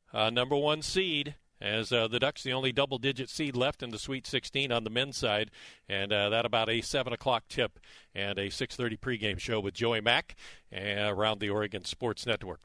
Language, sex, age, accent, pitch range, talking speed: English, male, 50-69, American, 110-140 Hz, 200 wpm